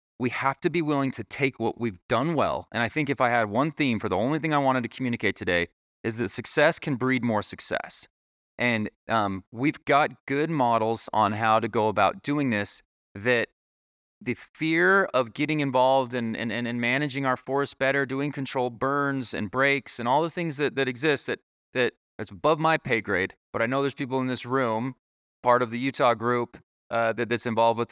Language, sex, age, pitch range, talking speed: English, male, 30-49, 100-130 Hz, 215 wpm